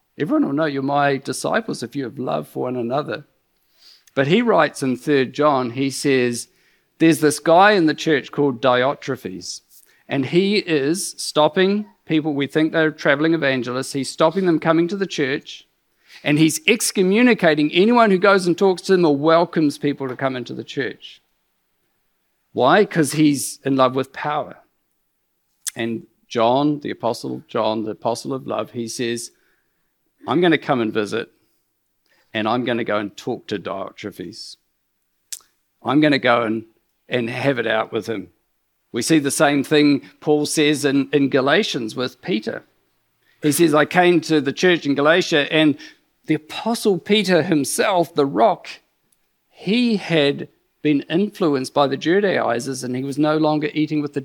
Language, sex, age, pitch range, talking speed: English, male, 50-69, 135-170 Hz, 165 wpm